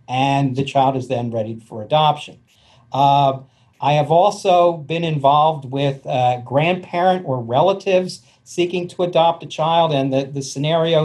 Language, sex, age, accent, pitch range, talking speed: English, male, 50-69, American, 125-150 Hz, 150 wpm